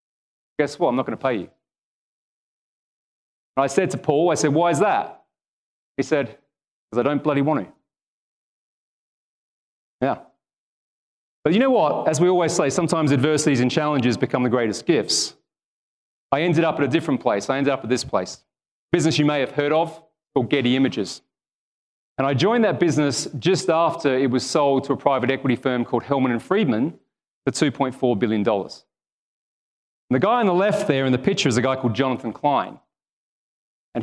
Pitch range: 120-150 Hz